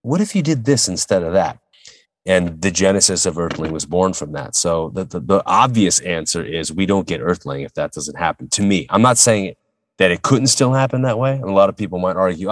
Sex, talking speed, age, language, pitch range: male, 245 wpm, 30-49, English, 80-95 Hz